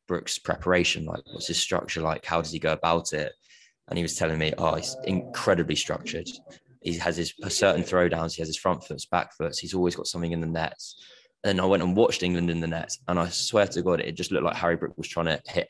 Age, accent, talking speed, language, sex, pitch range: 20-39, British, 250 wpm, English, male, 80-90 Hz